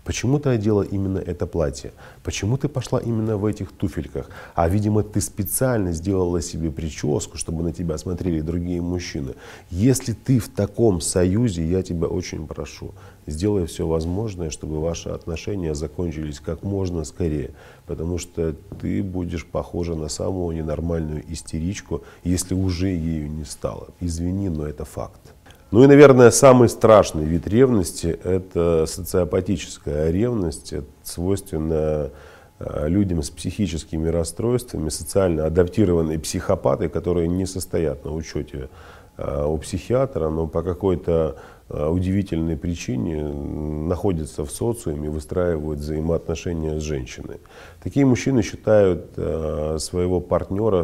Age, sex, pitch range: 40-59, male, 80-100 Hz